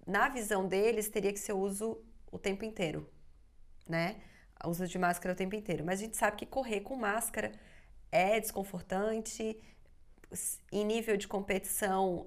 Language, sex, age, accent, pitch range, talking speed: Portuguese, female, 20-39, Brazilian, 180-220 Hz, 160 wpm